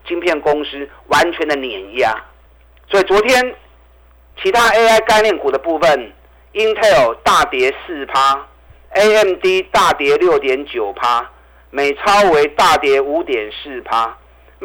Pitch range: 135-225 Hz